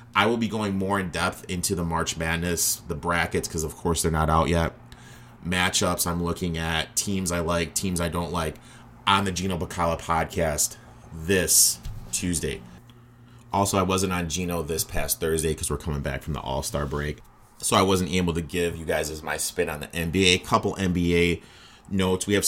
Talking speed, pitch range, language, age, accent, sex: 195 wpm, 80-95 Hz, English, 30-49, American, male